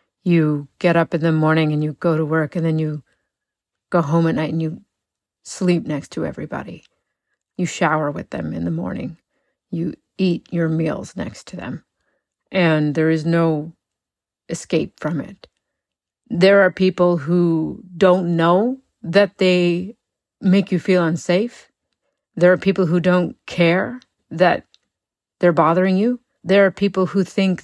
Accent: American